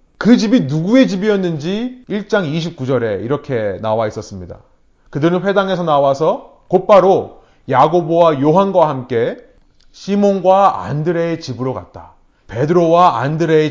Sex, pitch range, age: male, 130-200 Hz, 30-49